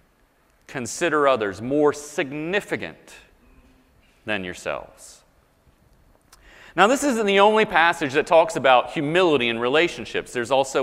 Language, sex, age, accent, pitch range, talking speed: English, male, 30-49, American, 135-180 Hz, 110 wpm